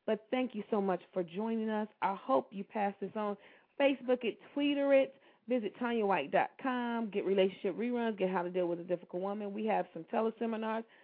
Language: English